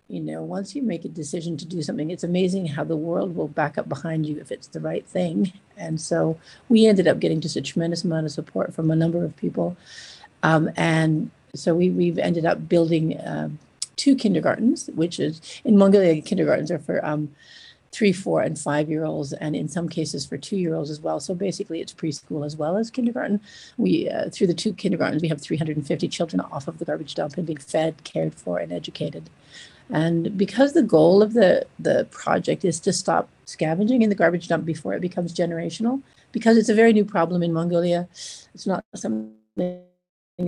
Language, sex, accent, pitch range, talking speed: English, female, American, 155-180 Hz, 200 wpm